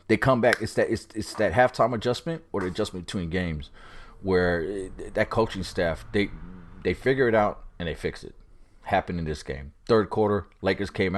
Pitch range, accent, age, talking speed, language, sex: 90-110 Hz, American, 30-49, 200 wpm, English, male